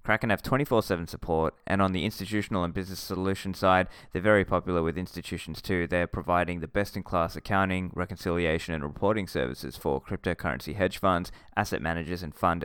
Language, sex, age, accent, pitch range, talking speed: English, male, 20-39, Australian, 80-100 Hz, 165 wpm